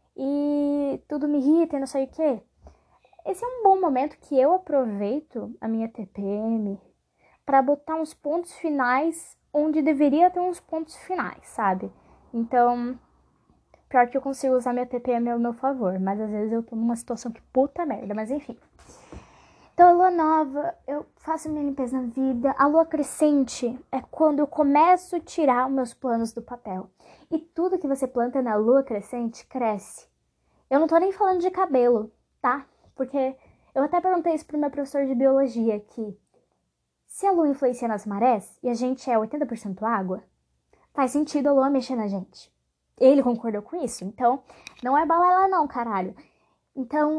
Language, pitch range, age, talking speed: Portuguese, 240-310 Hz, 10-29, 175 wpm